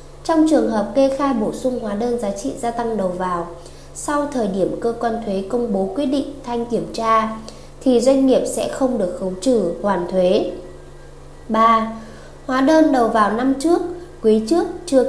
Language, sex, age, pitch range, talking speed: Vietnamese, female, 20-39, 200-265 Hz, 190 wpm